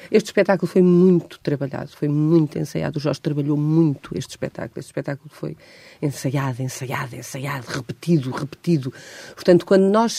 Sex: female